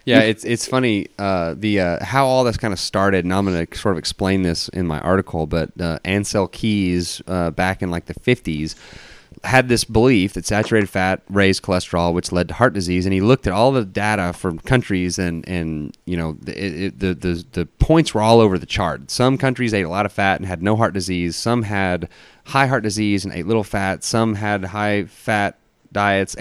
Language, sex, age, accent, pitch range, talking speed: English, male, 30-49, American, 90-110 Hz, 225 wpm